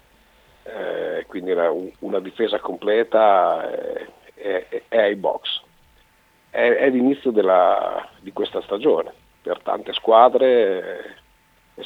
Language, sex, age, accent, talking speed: Italian, male, 50-69, native, 120 wpm